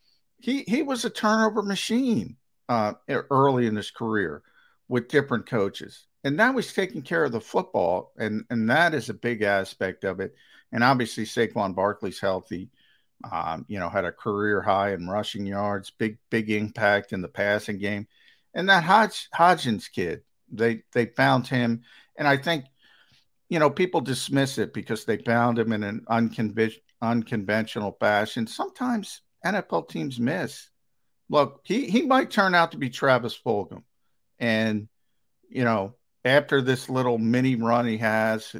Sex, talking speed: male, 160 wpm